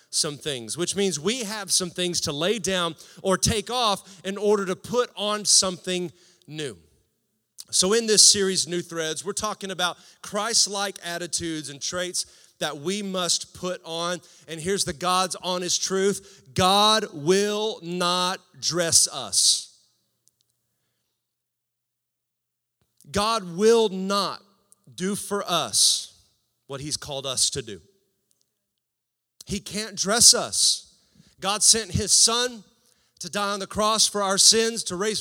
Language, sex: English, male